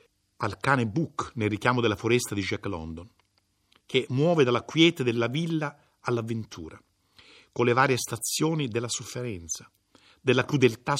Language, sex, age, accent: Italian, male, 50-69, native